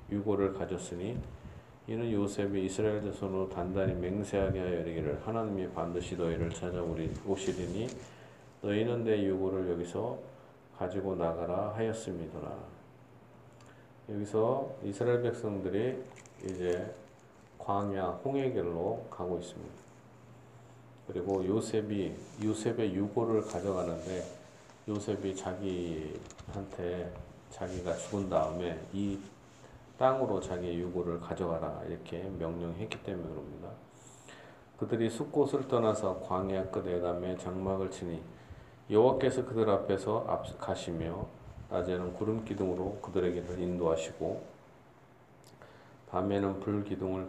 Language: Korean